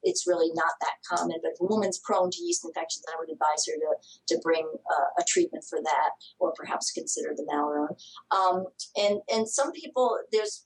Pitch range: 180-235 Hz